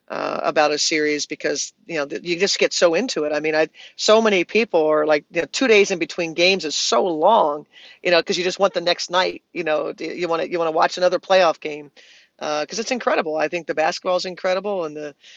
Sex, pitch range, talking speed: female, 150-180 Hz, 240 wpm